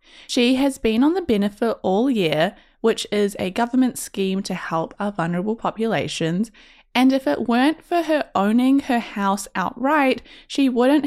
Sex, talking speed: female, 165 wpm